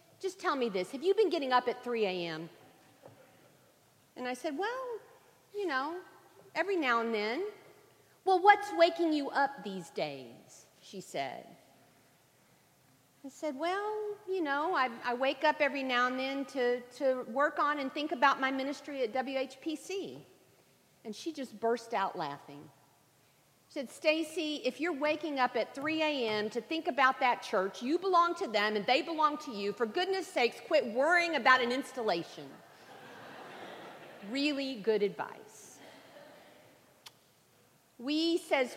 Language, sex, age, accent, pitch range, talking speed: English, female, 50-69, American, 230-320 Hz, 150 wpm